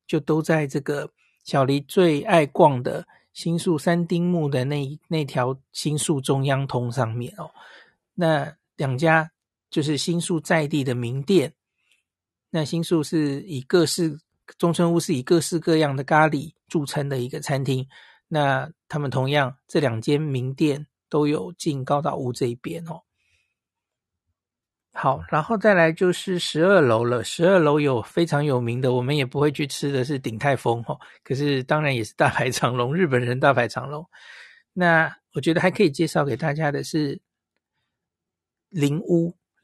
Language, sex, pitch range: Chinese, male, 135-165 Hz